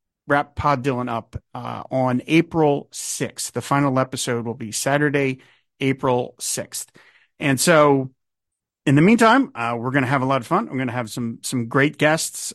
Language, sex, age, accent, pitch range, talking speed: English, male, 50-69, American, 120-145 Hz, 180 wpm